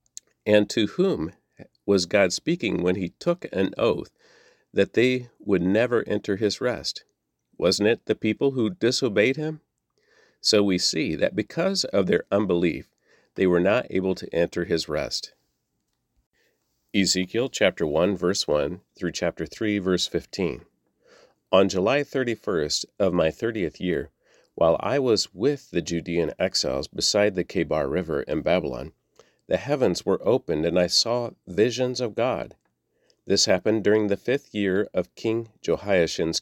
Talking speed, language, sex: 150 wpm, English, male